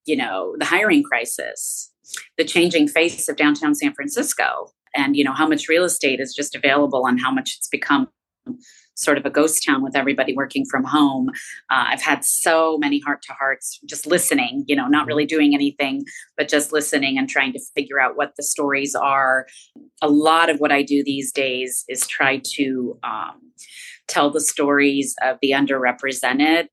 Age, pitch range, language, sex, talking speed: 30-49, 140-160 Hz, English, female, 180 wpm